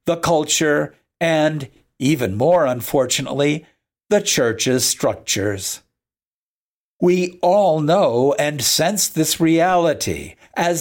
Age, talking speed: 60-79, 95 wpm